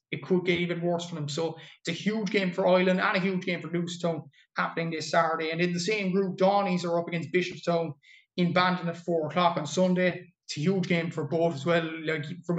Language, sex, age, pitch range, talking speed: English, male, 20-39, 165-185 Hz, 240 wpm